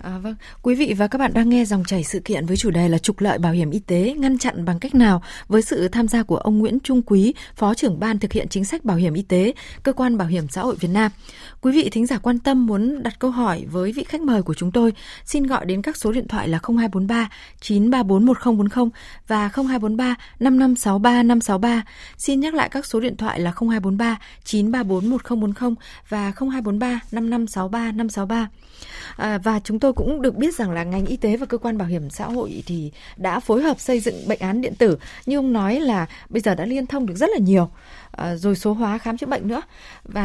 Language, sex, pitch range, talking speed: Vietnamese, female, 200-255 Hz, 225 wpm